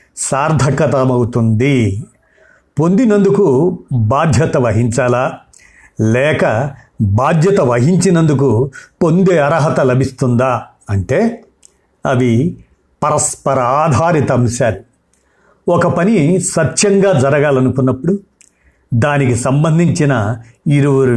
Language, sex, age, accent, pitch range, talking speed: Telugu, male, 50-69, native, 120-155 Hz, 60 wpm